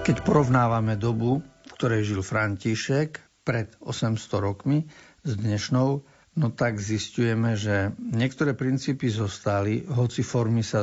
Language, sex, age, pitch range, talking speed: Slovak, male, 60-79, 105-125 Hz, 120 wpm